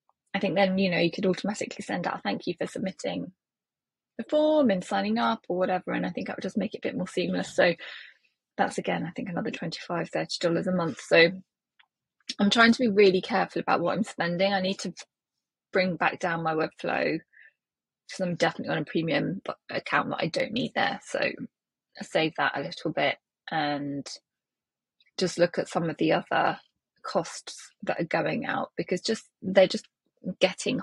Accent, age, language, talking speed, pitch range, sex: British, 20-39, English, 200 wpm, 175-250 Hz, female